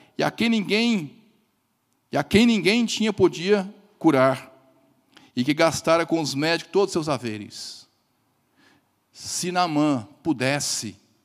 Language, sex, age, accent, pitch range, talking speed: Portuguese, male, 50-69, Brazilian, 130-180 Hz, 130 wpm